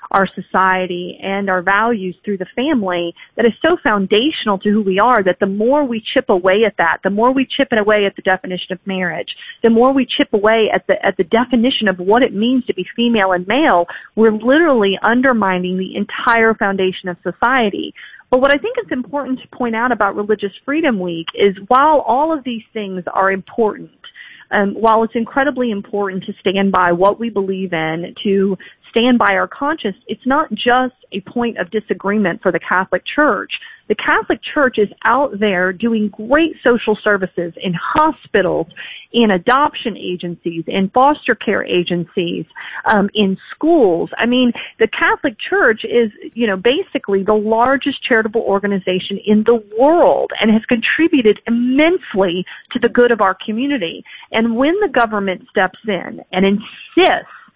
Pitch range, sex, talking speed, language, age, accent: 195-250 Hz, female, 175 wpm, English, 30-49, American